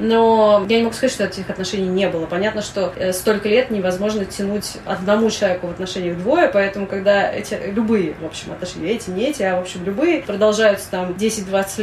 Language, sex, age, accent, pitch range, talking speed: Russian, female, 20-39, native, 175-210 Hz, 195 wpm